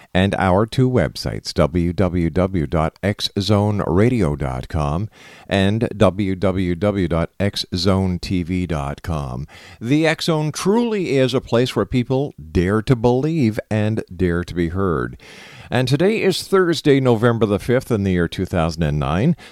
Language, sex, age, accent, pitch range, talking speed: English, male, 50-69, American, 90-125 Hz, 105 wpm